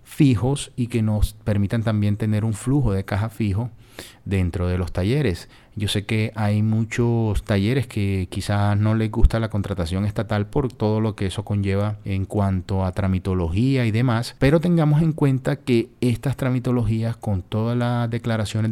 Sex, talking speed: male, 170 wpm